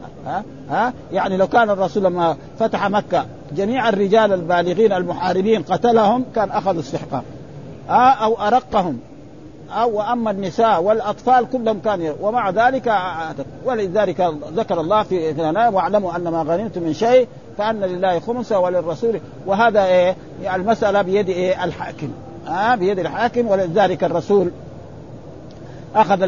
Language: Arabic